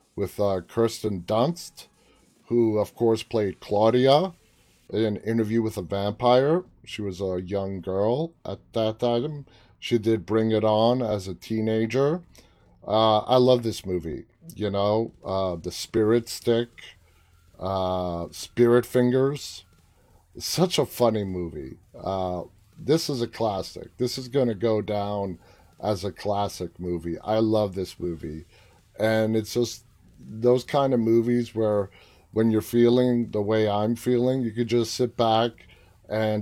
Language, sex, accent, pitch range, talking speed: English, male, American, 95-120 Hz, 145 wpm